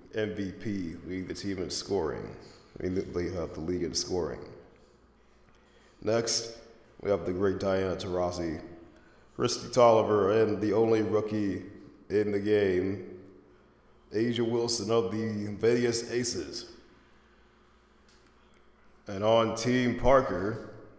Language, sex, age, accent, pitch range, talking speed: English, male, 20-39, American, 100-115 Hz, 110 wpm